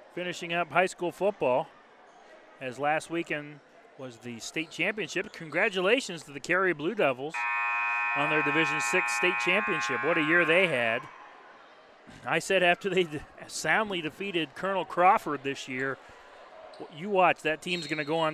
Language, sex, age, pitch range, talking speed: English, male, 30-49, 140-200 Hz, 150 wpm